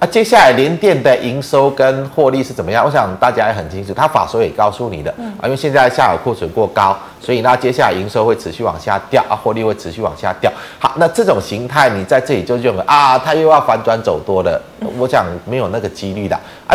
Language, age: Chinese, 30-49